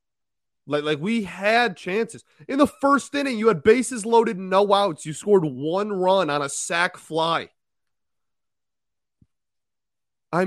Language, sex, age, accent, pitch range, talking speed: English, male, 30-49, American, 130-175 Hz, 140 wpm